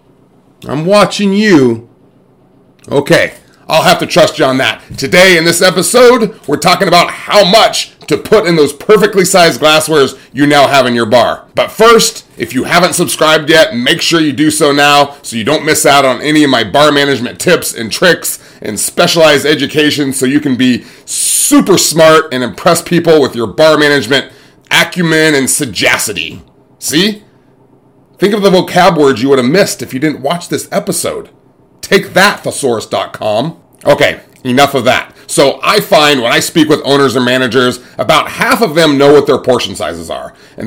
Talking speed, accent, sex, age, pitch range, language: 180 wpm, American, male, 30-49, 135-185 Hz, English